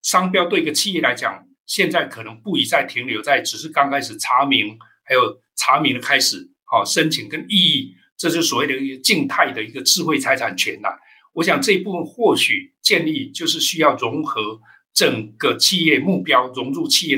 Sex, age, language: male, 60-79, Chinese